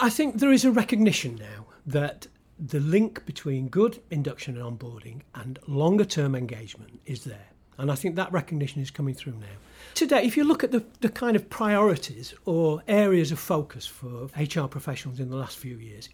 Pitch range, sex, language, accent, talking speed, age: 125-180 Hz, male, English, British, 190 wpm, 40-59